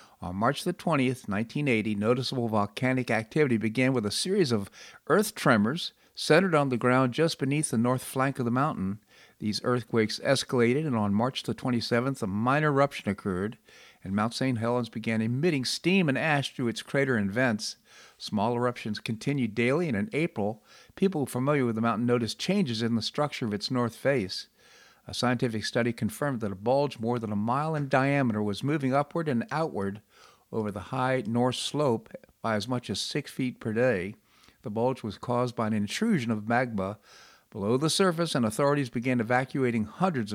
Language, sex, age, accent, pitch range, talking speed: English, male, 50-69, American, 110-140 Hz, 180 wpm